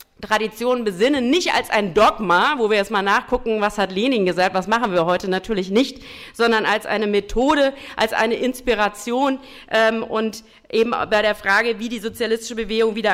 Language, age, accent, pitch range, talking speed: German, 50-69, German, 210-245 Hz, 180 wpm